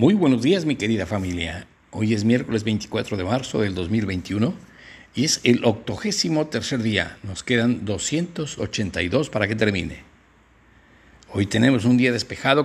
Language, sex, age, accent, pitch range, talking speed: Spanish, male, 60-79, Mexican, 100-125 Hz, 145 wpm